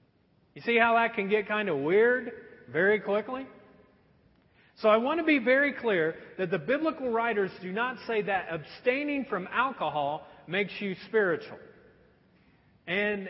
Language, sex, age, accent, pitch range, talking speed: English, male, 40-59, American, 165-240 Hz, 150 wpm